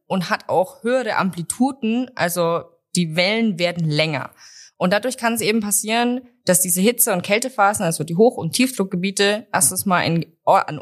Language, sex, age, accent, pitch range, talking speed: German, female, 20-39, German, 165-210 Hz, 160 wpm